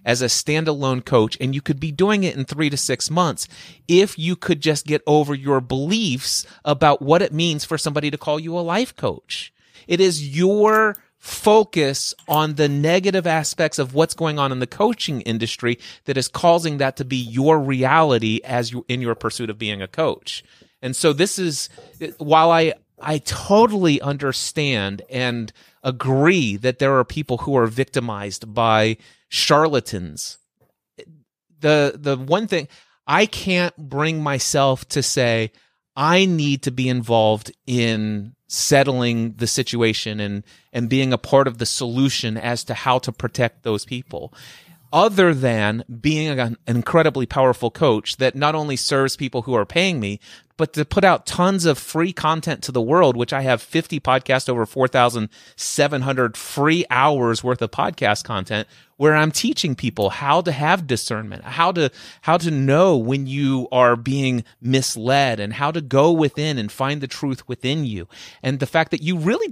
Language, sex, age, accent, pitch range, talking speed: English, male, 30-49, American, 120-160 Hz, 170 wpm